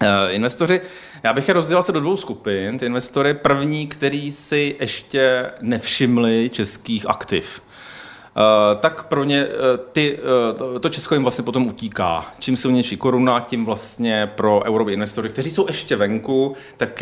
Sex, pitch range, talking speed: male, 105-140 Hz, 160 wpm